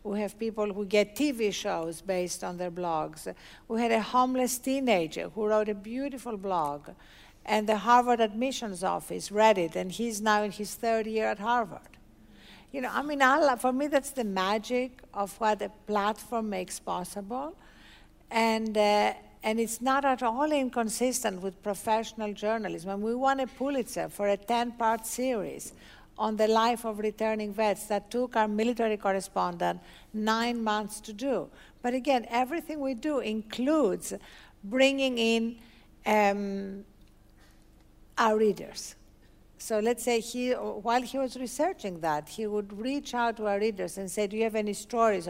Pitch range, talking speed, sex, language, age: 200-245 Hz, 165 wpm, female, English, 60-79